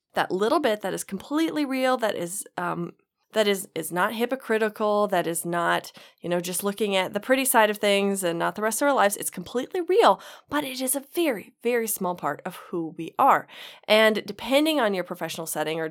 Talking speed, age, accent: 215 wpm, 20-39, American